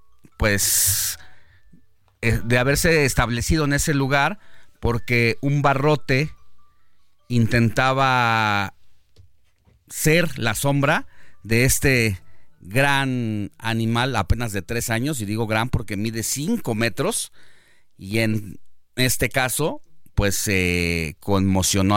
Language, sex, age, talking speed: Spanish, male, 40-59, 100 wpm